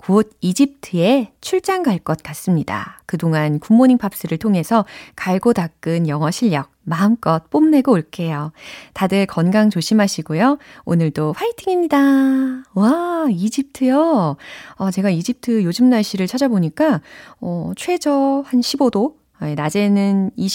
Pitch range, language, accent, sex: 160-245 Hz, Korean, native, female